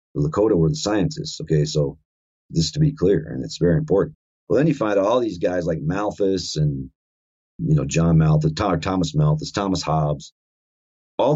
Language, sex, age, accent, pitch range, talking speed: English, male, 40-59, American, 80-120 Hz, 180 wpm